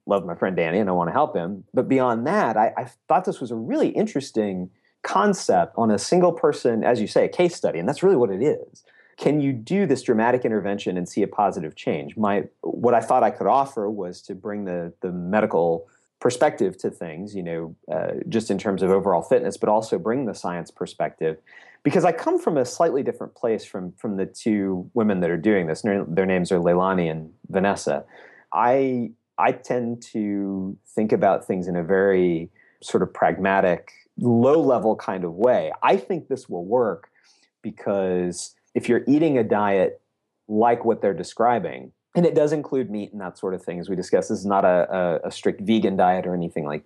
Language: English